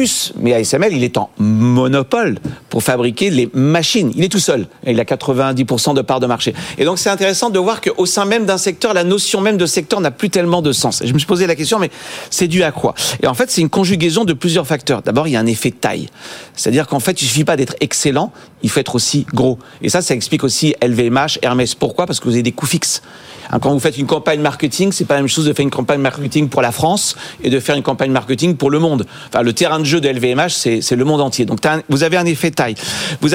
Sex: male